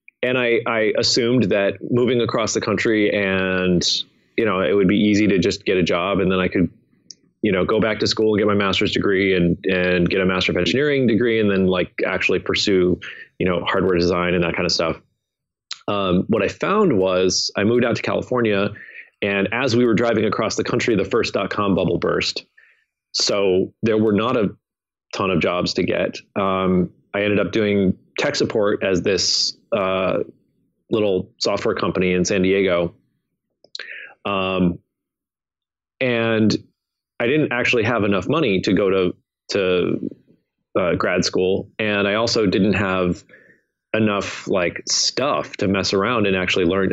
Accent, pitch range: American, 95-110 Hz